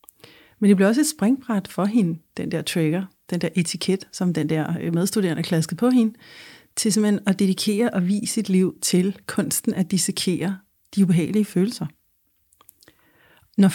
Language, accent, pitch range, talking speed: Danish, native, 175-215 Hz, 160 wpm